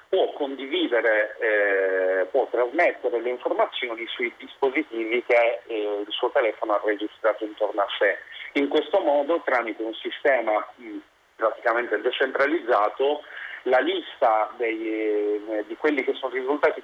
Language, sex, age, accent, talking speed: Italian, male, 40-59, native, 125 wpm